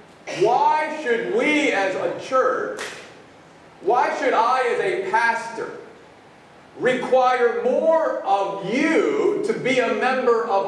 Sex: male